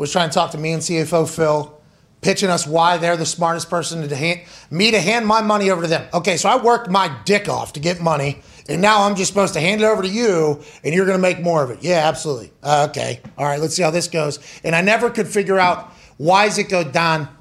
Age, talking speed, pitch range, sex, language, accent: 30-49, 260 wpm, 165-205 Hz, male, English, American